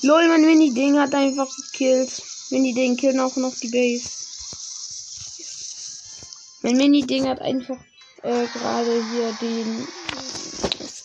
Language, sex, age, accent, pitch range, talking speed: German, female, 10-29, German, 215-265 Hz, 120 wpm